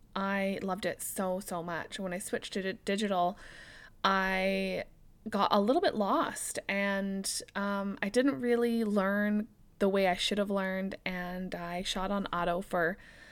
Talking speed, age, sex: 160 wpm, 20-39, female